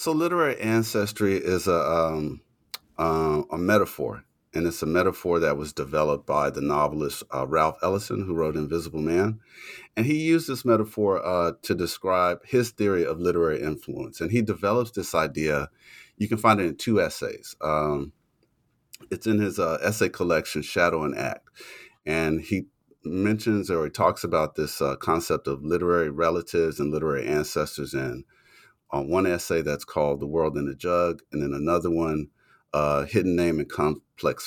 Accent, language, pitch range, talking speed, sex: American, English, 75-100 Hz, 170 wpm, male